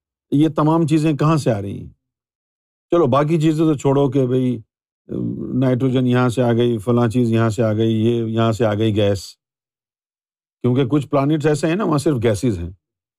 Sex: male